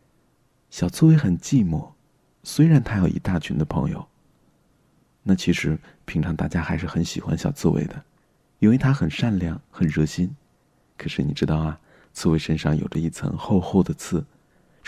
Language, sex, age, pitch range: Chinese, male, 30-49, 85-130 Hz